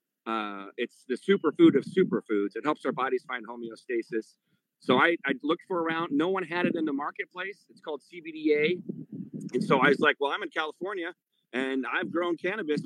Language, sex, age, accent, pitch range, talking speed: English, male, 40-59, American, 120-175 Hz, 190 wpm